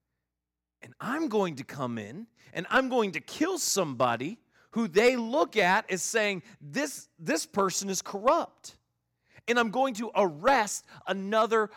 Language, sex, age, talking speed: English, male, 30-49, 150 wpm